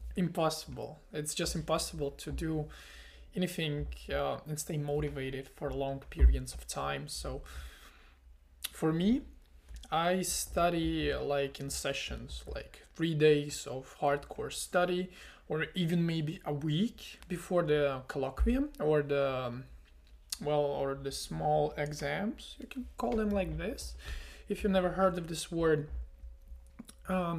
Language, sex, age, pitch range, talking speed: English, male, 20-39, 135-175 Hz, 130 wpm